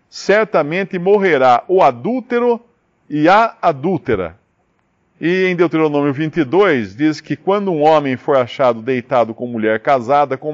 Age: 50-69